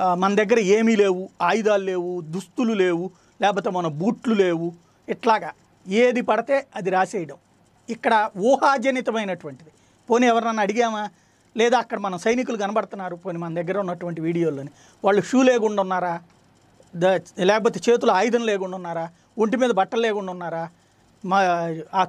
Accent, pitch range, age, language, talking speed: native, 185-225 Hz, 40-59, Telugu, 120 wpm